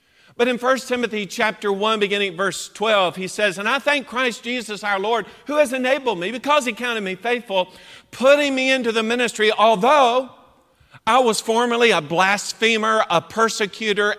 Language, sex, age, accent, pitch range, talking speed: English, male, 50-69, American, 185-245 Hz, 170 wpm